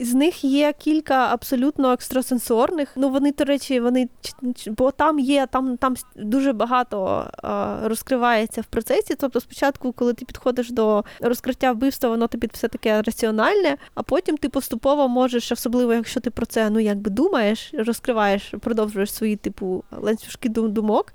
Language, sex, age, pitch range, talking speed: Ukrainian, female, 20-39, 230-275 Hz, 155 wpm